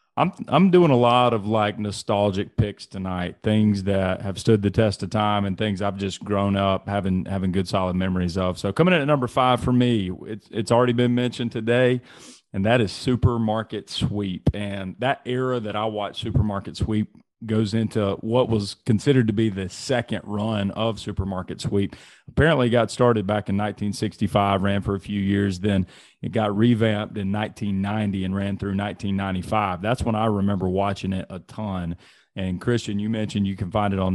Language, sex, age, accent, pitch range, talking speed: English, male, 30-49, American, 95-110 Hz, 190 wpm